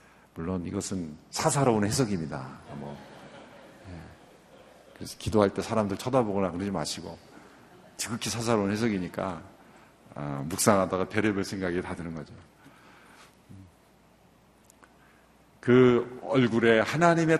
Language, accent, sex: Korean, native, male